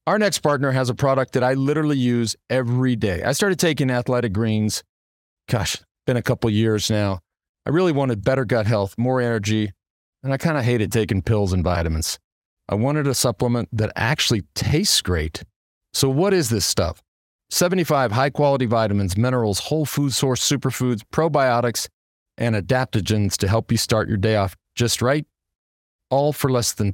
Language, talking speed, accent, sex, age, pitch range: English, 170 wpm, American, male, 40-59, 100-135 Hz